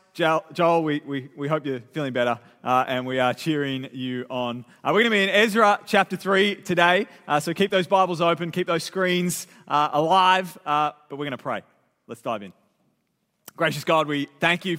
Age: 30-49